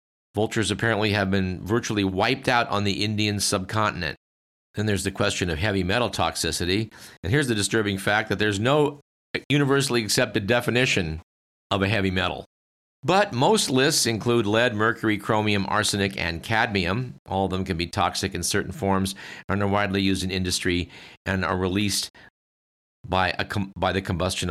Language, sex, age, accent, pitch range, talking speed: English, male, 50-69, American, 95-115 Hz, 160 wpm